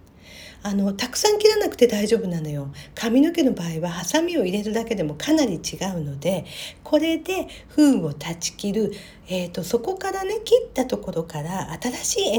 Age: 50-69